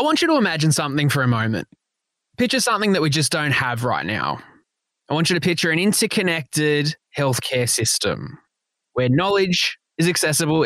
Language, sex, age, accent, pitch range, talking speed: English, male, 20-39, Australian, 150-205 Hz, 175 wpm